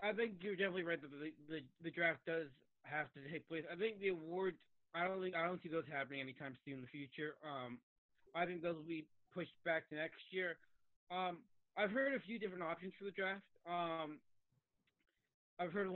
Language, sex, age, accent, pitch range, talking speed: English, male, 20-39, American, 150-180 Hz, 210 wpm